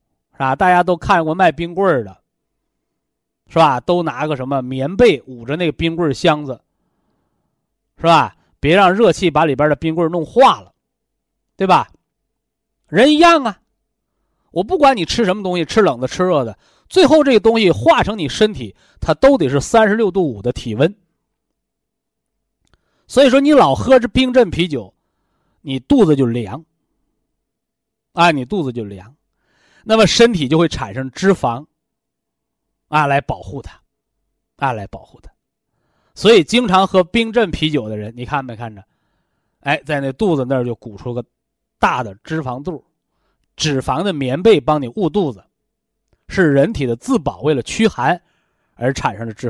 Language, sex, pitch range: Chinese, male, 130-195 Hz